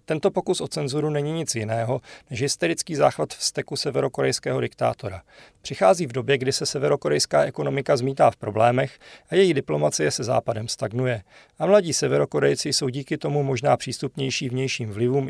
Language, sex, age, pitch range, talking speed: Czech, male, 40-59, 120-150 Hz, 155 wpm